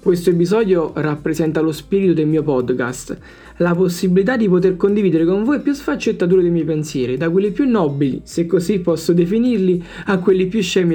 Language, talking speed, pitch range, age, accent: Italian, 175 wpm, 170-215 Hz, 20-39, native